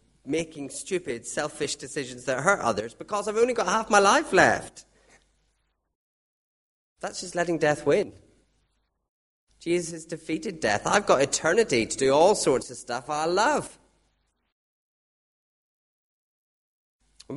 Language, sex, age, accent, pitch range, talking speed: English, male, 30-49, British, 120-190 Hz, 125 wpm